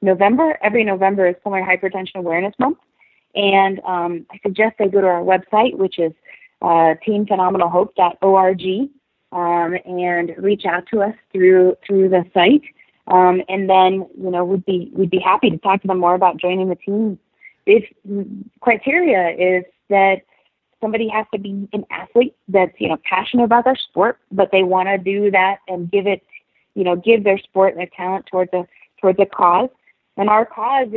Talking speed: 180 wpm